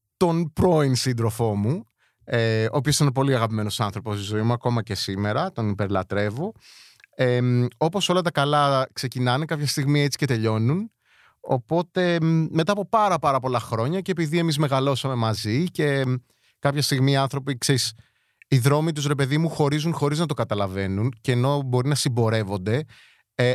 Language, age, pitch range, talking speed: Greek, 30-49, 115-155 Hz, 165 wpm